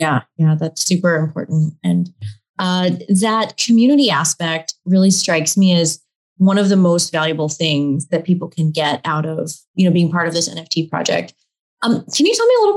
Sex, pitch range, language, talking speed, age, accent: female, 165-200 Hz, English, 195 wpm, 20-39, American